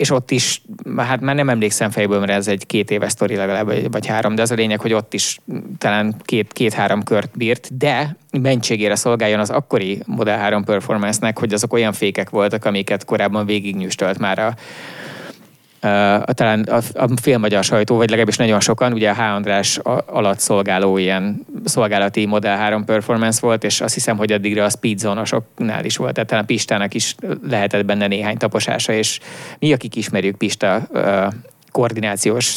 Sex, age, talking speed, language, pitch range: male, 20-39, 175 wpm, English, 105-125 Hz